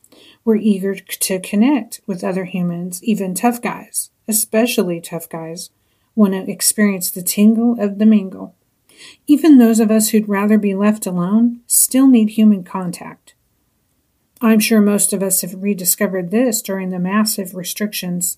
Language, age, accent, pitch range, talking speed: English, 50-69, American, 190-225 Hz, 150 wpm